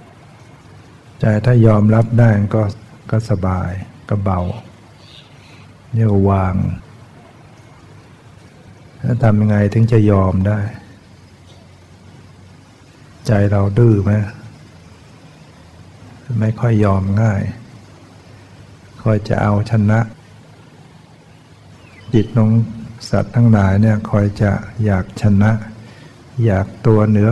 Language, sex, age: Thai, male, 60-79